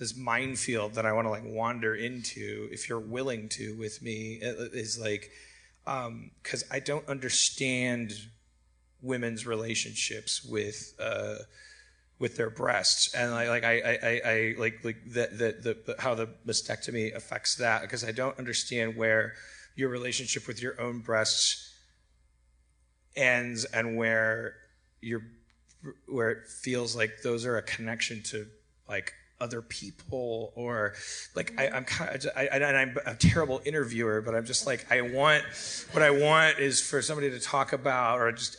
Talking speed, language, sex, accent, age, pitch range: 160 wpm, English, male, American, 30-49, 110-130 Hz